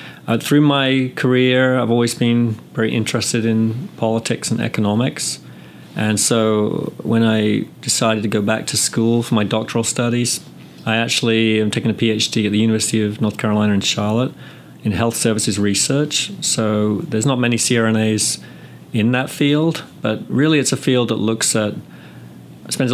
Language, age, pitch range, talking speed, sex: English, 40-59, 105-120 Hz, 160 wpm, male